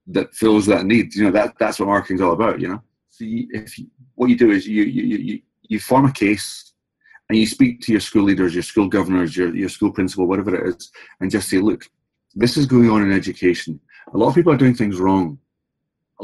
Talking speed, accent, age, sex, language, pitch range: 240 wpm, British, 30-49, male, English, 90-115 Hz